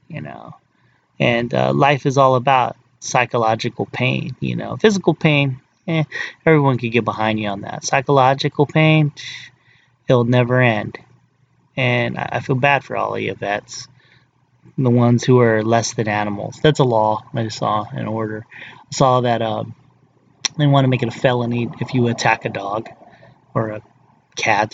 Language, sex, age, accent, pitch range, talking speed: English, male, 30-49, American, 115-135 Hz, 170 wpm